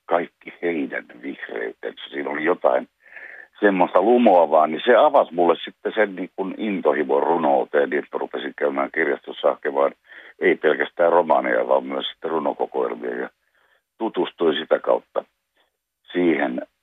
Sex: male